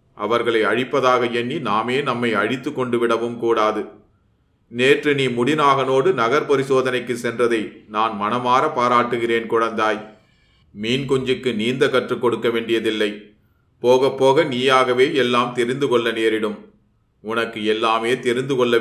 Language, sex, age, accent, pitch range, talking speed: Tamil, male, 30-49, native, 110-125 Hz, 110 wpm